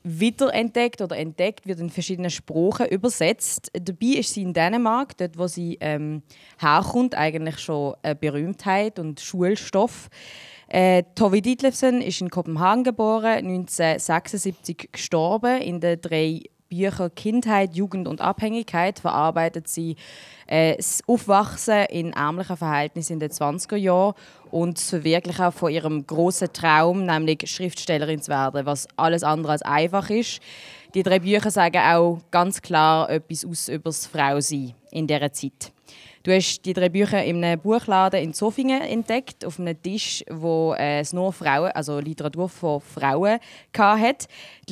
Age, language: 20-39, German